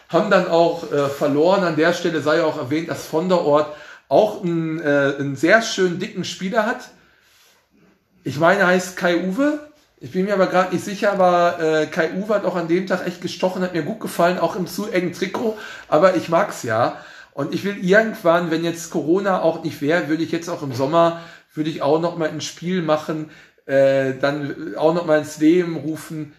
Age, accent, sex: 50-69, German, male